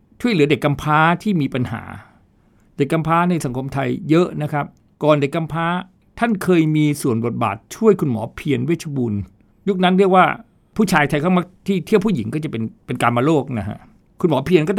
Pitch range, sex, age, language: 120-180 Hz, male, 60-79, Thai